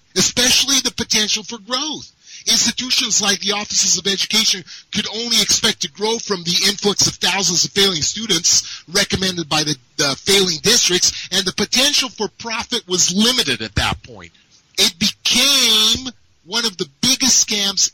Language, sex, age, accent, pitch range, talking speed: English, male, 40-59, American, 170-225 Hz, 155 wpm